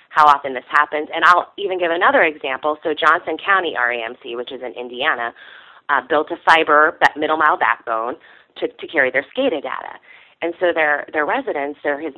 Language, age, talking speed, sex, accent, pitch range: English, 30-49, 185 wpm, female, American, 130-185 Hz